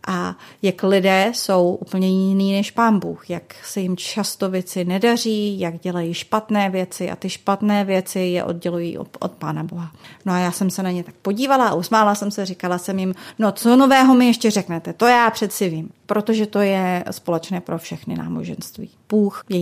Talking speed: 195 wpm